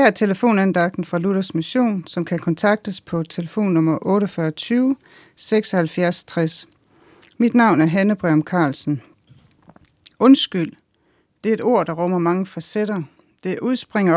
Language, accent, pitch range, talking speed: Danish, native, 160-205 Hz, 125 wpm